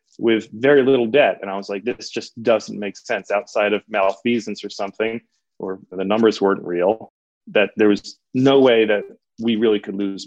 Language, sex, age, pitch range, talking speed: English, male, 30-49, 100-120 Hz, 195 wpm